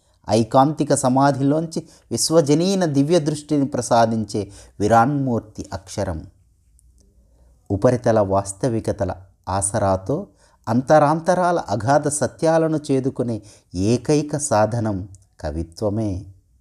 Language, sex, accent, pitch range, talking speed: Telugu, male, native, 95-130 Hz, 65 wpm